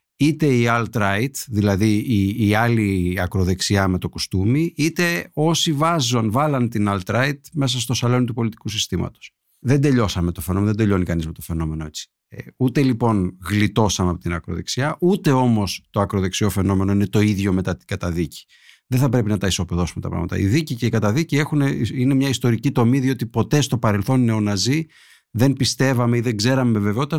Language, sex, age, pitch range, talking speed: Greek, male, 50-69, 100-130 Hz, 180 wpm